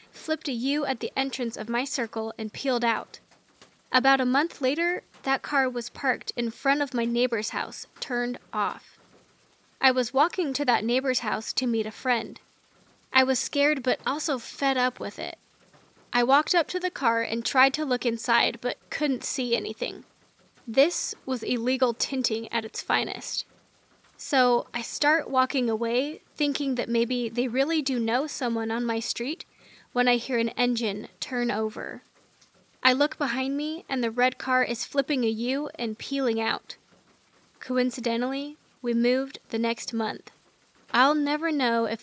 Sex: female